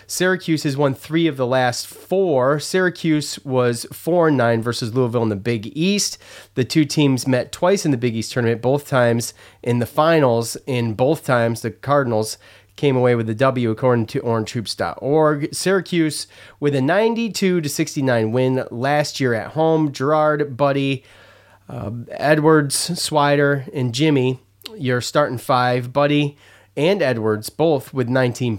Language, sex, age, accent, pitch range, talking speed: English, male, 30-49, American, 115-150 Hz, 150 wpm